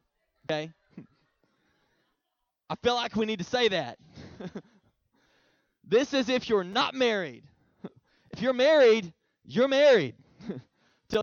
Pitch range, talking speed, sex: 200-250 Hz, 105 wpm, male